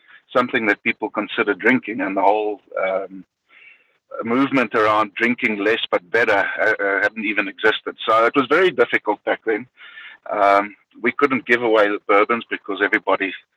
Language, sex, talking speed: English, male, 155 wpm